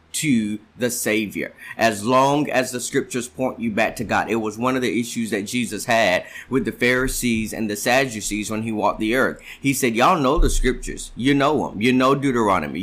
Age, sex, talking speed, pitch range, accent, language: 30-49, male, 210 wpm, 115-135 Hz, American, English